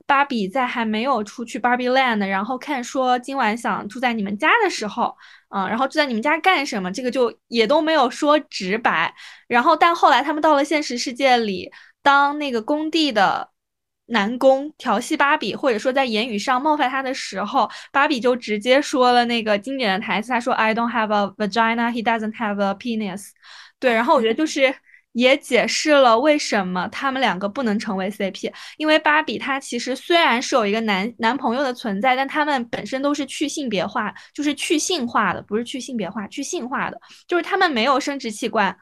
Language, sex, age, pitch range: Chinese, female, 20-39, 210-275 Hz